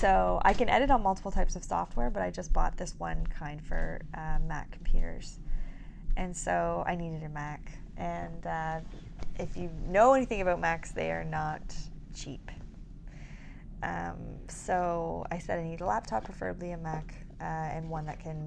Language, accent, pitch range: English, American, 145-180 Hz